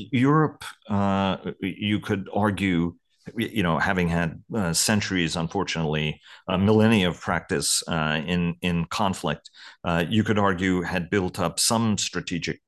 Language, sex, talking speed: English, male, 135 wpm